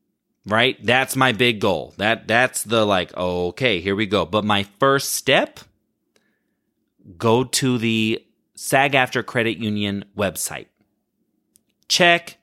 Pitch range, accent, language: 110-150 Hz, American, English